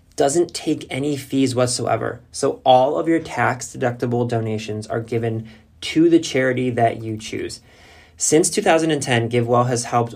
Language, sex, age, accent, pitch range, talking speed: English, male, 20-39, American, 110-125 Hz, 140 wpm